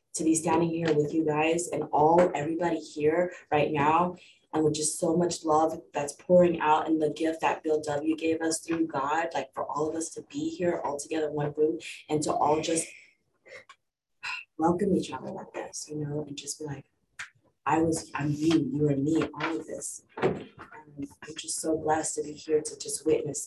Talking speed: 210 wpm